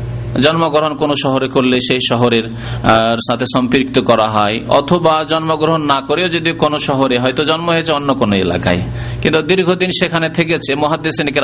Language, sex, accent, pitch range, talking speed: Bengali, male, native, 120-160 Hz, 145 wpm